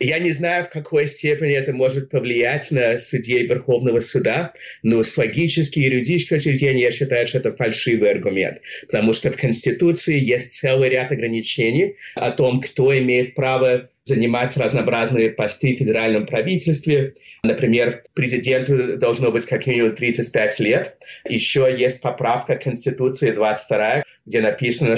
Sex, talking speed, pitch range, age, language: male, 140 wpm, 115-145 Hz, 30-49, Russian